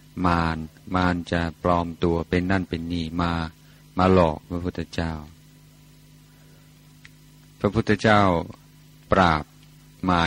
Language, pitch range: Thai, 85-145 Hz